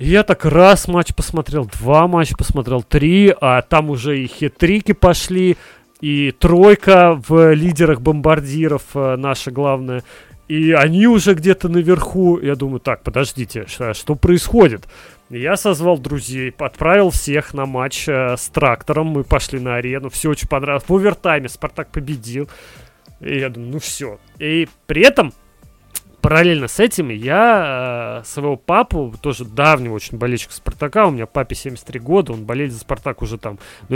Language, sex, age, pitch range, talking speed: Russian, male, 30-49, 130-190 Hz, 150 wpm